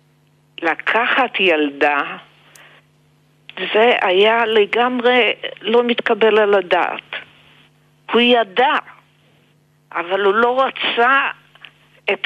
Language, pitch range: Hebrew, 155-230 Hz